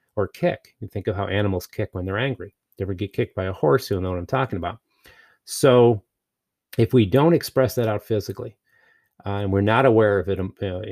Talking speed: 230 wpm